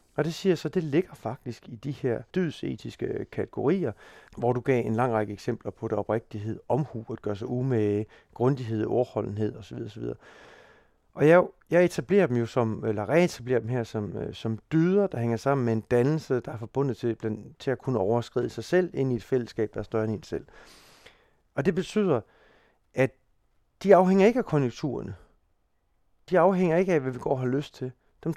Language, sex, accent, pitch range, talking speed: Danish, male, native, 115-155 Hz, 195 wpm